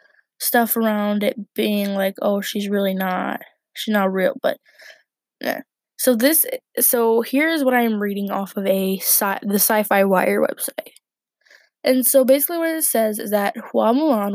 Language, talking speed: English, 165 wpm